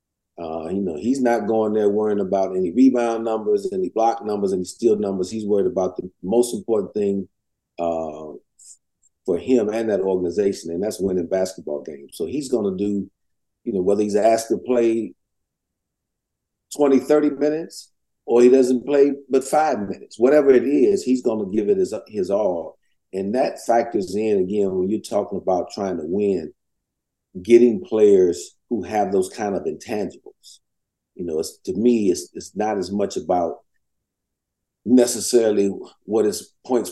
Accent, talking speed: American, 170 wpm